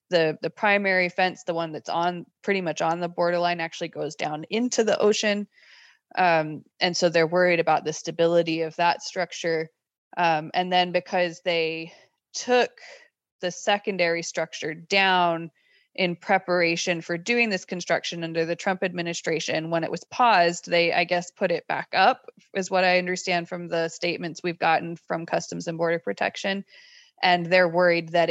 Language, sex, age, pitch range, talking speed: English, female, 20-39, 165-185 Hz, 165 wpm